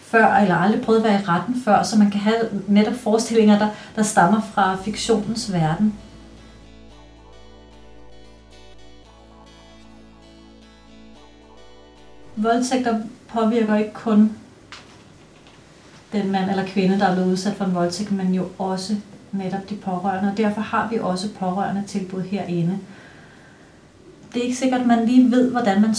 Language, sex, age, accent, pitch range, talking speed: Danish, female, 30-49, native, 190-225 Hz, 135 wpm